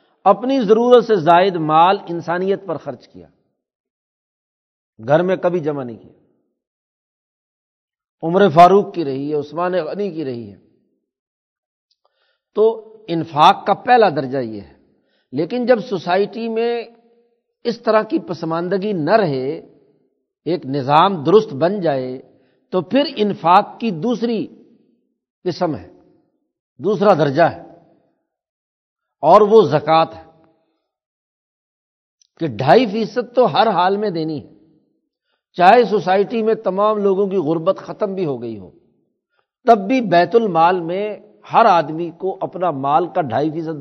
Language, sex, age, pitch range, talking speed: Urdu, male, 60-79, 160-225 Hz, 130 wpm